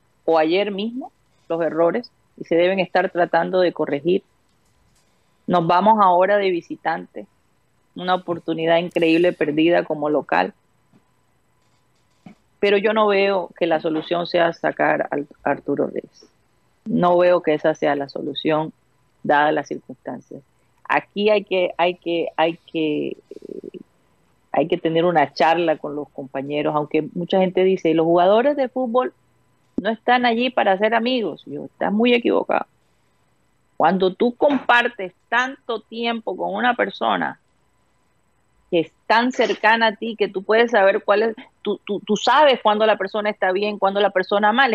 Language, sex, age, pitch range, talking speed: Spanish, female, 30-49, 170-235 Hz, 150 wpm